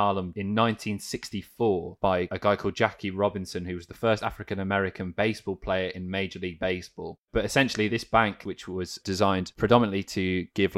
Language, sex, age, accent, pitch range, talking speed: English, male, 20-39, British, 90-105 Hz, 165 wpm